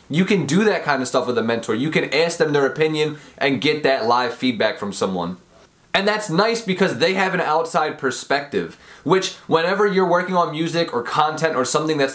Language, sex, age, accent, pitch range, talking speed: English, male, 20-39, American, 140-185 Hz, 210 wpm